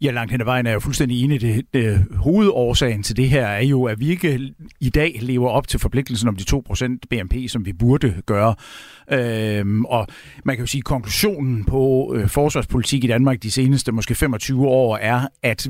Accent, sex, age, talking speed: native, male, 60-79, 205 wpm